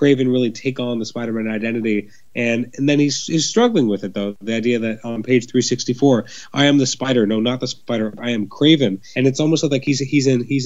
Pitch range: 110-130 Hz